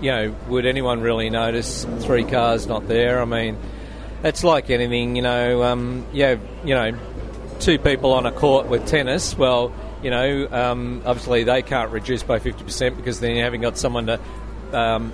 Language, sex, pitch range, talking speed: English, male, 115-130 Hz, 190 wpm